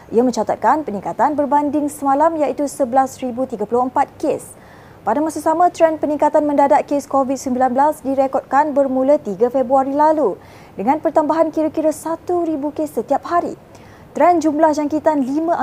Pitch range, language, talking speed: 255-310 Hz, Malay, 125 wpm